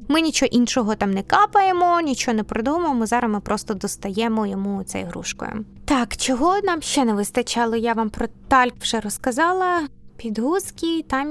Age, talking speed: 20-39, 160 wpm